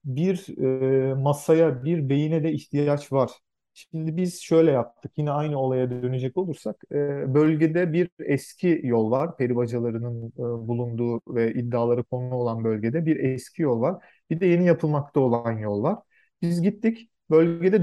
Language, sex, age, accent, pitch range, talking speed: Turkish, male, 40-59, native, 130-175 Hz, 150 wpm